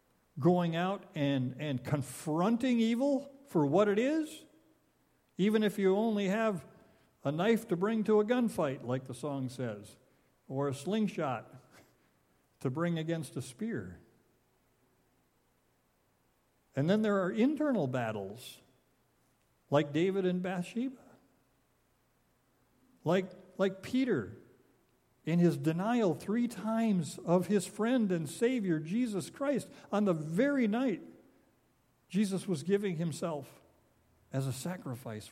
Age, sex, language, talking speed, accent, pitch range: 50-69, male, English, 120 wpm, American, 135-210 Hz